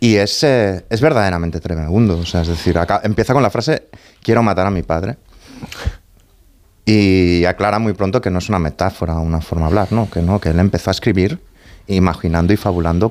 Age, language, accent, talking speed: 30-49, Spanish, Spanish, 190 wpm